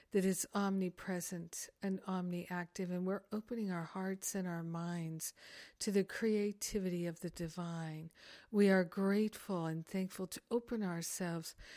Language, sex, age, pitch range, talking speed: English, female, 50-69, 175-200 Hz, 140 wpm